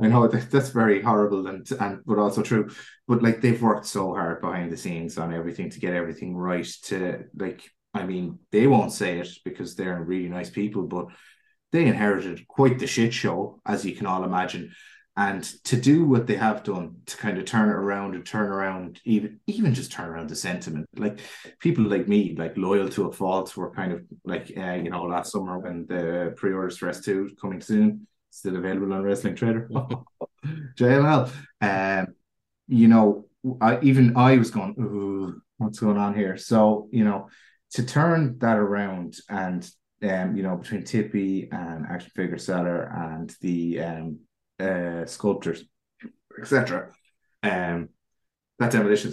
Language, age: English, 20-39